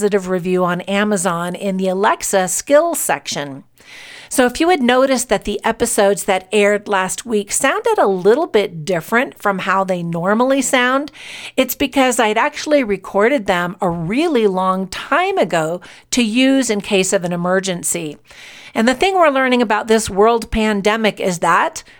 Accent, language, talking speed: American, English, 160 wpm